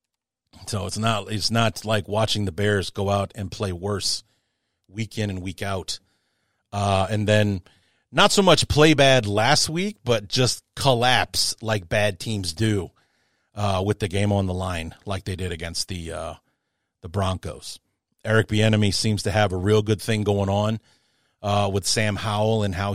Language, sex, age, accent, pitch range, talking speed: English, male, 40-59, American, 100-115 Hz, 180 wpm